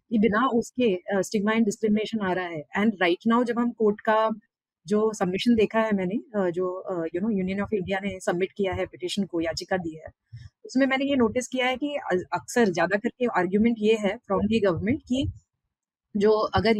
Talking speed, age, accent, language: 195 wpm, 30-49, native, Hindi